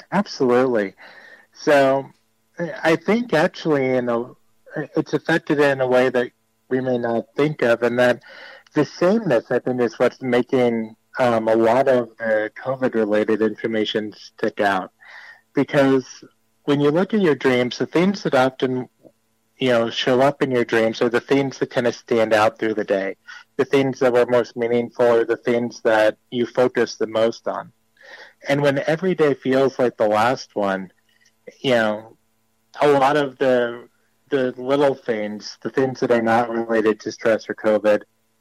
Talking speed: 165 wpm